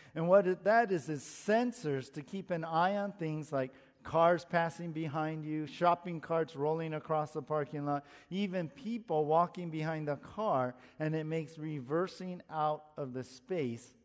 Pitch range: 150-190 Hz